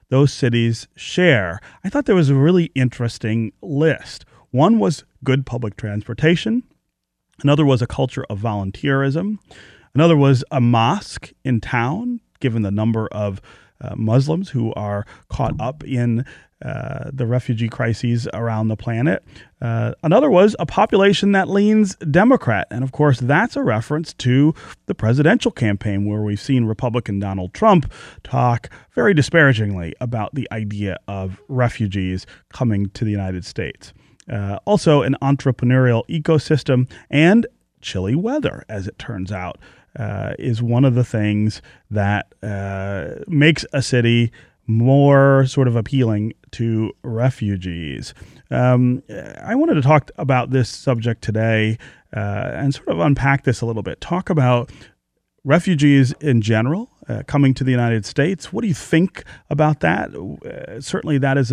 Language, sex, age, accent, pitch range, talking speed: English, male, 30-49, American, 110-145 Hz, 145 wpm